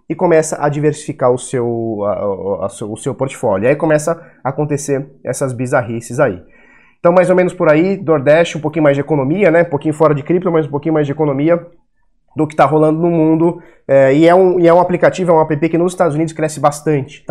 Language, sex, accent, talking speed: Portuguese, male, Brazilian, 205 wpm